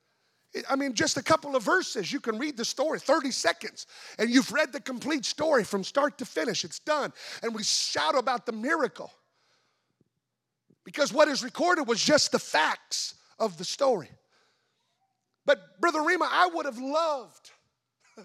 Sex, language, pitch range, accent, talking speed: male, English, 255-310 Hz, American, 165 wpm